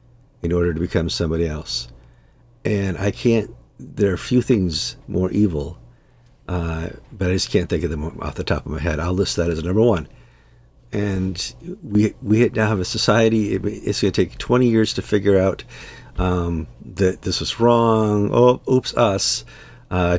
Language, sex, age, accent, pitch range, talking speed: English, male, 50-69, American, 85-110 Hz, 180 wpm